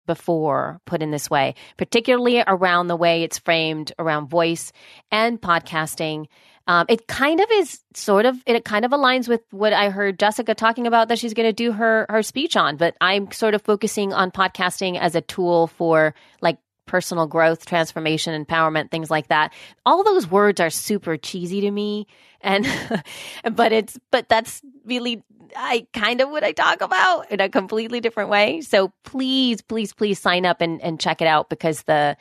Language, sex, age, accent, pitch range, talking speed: English, female, 30-49, American, 165-225 Hz, 185 wpm